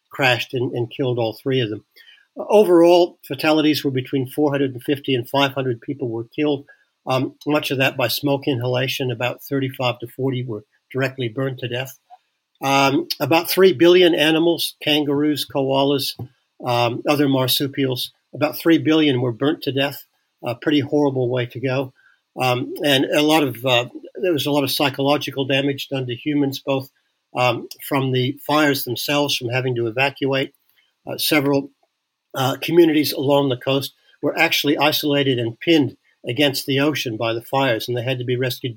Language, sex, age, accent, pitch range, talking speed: English, male, 50-69, American, 125-145 Hz, 165 wpm